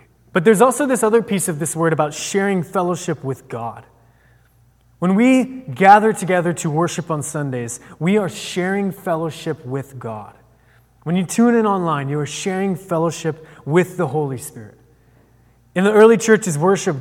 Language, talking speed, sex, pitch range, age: English, 160 wpm, male, 135-185 Hz, 20-39